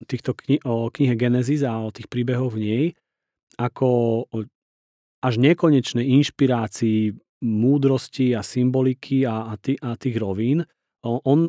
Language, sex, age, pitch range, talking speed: Slovak, male, 30-49, 115-135 Hz, 120 wpm